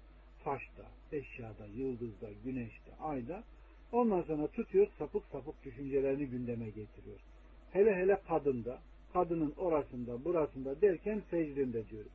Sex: male